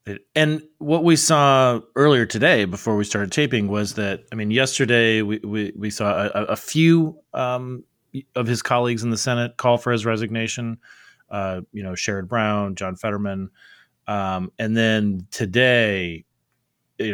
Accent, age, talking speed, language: American, 30-49, 160 wpm, English